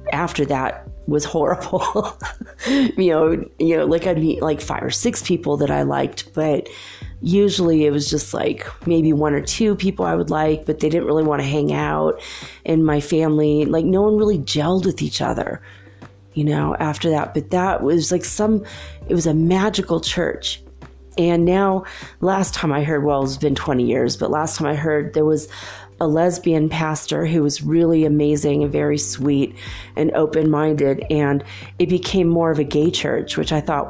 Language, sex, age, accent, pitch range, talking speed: English, female, 30-49, American, 140-170 Hz, 190 wpm